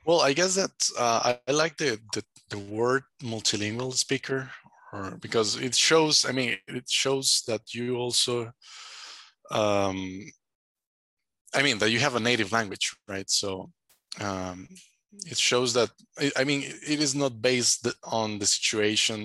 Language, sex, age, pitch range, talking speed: English, male, 20-39, 105-130 Hz, 150 wpm